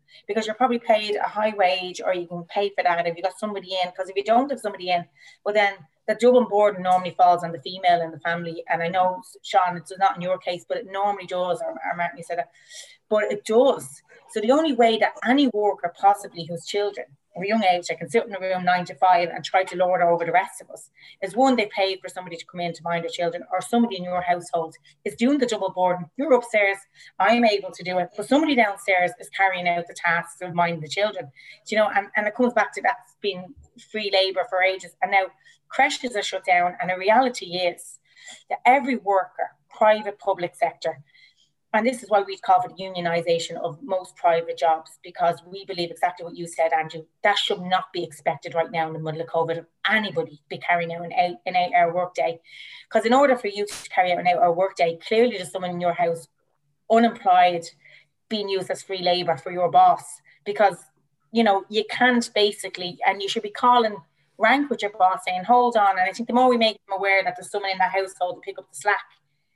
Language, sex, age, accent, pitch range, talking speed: English, female, 30-49, Irish, 175-215 Hz, 230 wpm